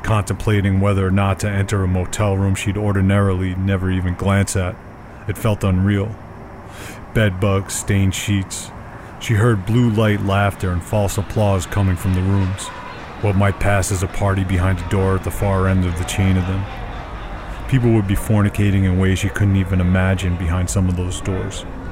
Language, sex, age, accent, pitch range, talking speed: English, male, 40-59, American, 90-105 Hz, 185 wpm